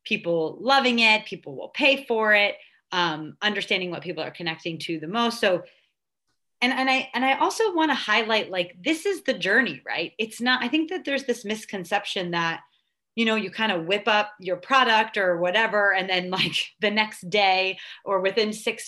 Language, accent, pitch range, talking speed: English, American, 185-255 Hz, 195 wpm